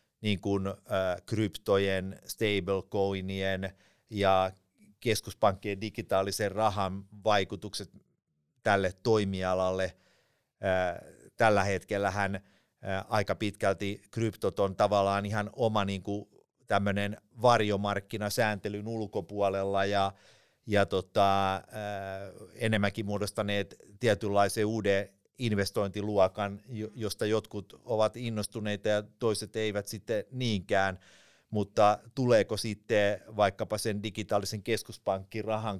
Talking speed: 80 wpm